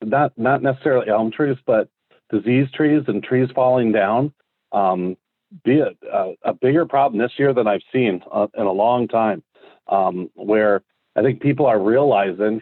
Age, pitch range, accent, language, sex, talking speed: 40-59, 110-130 Hz, American, English, male, 165 wpm